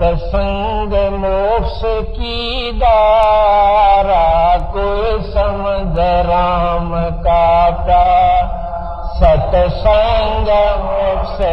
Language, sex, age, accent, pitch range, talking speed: Hindi, male, 50-69, native, 175-225 Hz, 50 wpm